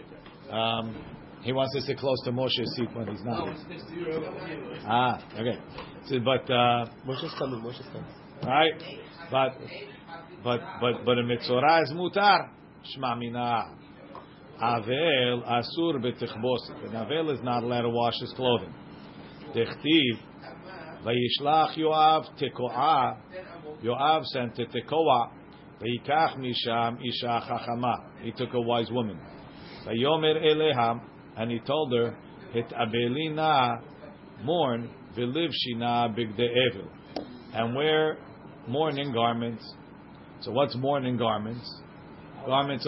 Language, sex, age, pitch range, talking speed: English, male, 50-69, 120-155 Hz, 105 wpm